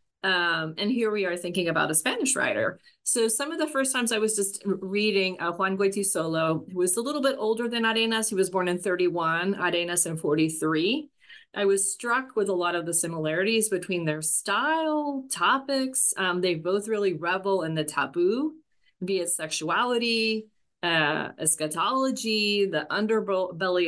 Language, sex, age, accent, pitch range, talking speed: English, female, 30-49, American, 170-220 Hz, 170 wpm